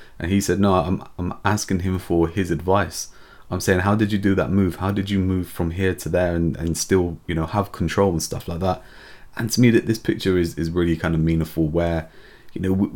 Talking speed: 250 wpm